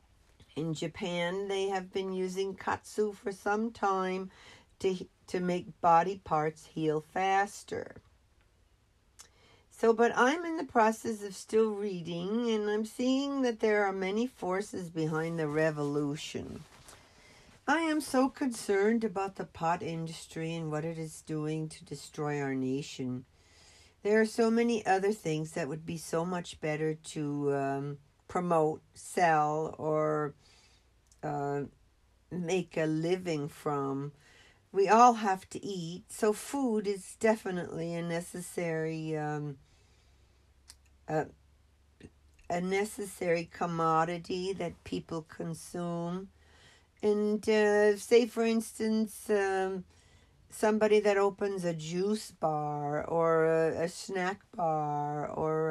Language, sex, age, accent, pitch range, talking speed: English, female, 60-79, American, 150-205 Hz, 120 wpm